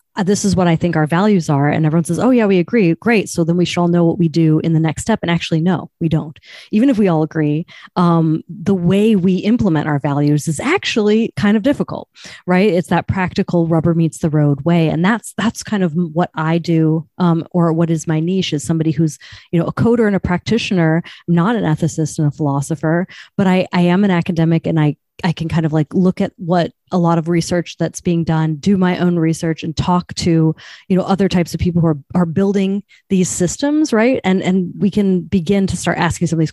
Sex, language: female, English